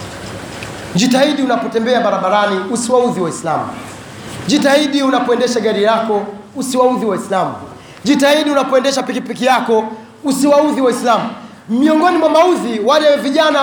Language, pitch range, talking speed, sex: Swahili, 230-305 Hz, 95 wpm, male